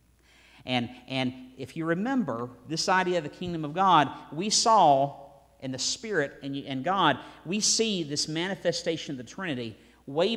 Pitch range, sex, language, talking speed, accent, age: 120-170 Hz, male, English, 160 wpm, American, 50-69